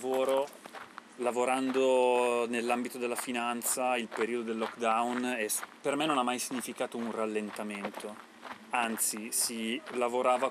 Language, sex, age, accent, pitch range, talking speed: Italian, male, 30-49, native, 110-135 Hz, 110 wpm